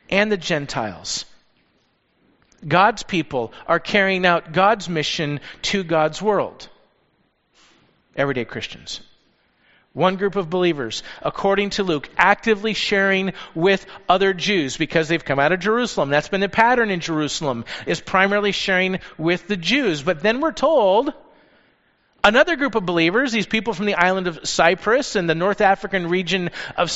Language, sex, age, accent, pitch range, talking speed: English, male, 40-59, American, 135-195 Hz, 145 wpm